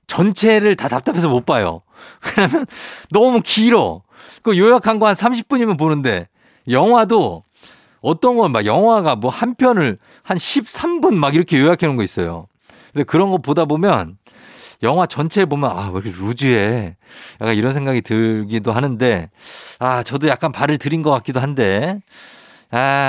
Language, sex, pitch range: Korean, male, 110-170 Hz